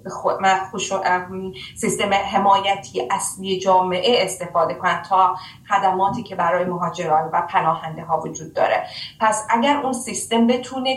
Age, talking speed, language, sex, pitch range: 30-49, 120 wpm, Persian, female, 180-210 Hz